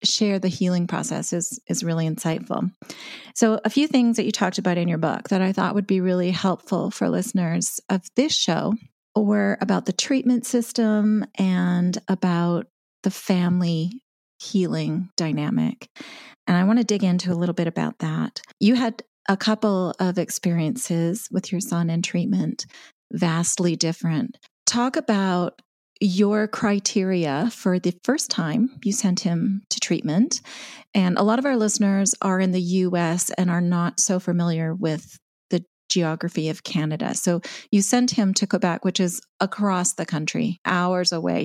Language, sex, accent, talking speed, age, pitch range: English, female, American, 165 wpm, 30-49, 175-210 Hz